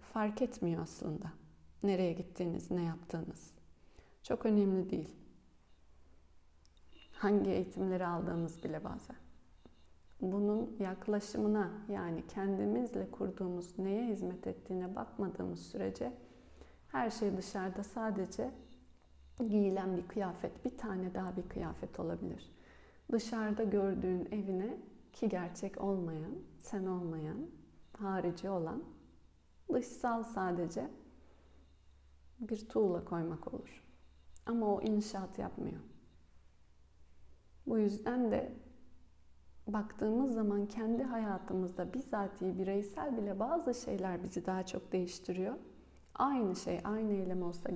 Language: Turkish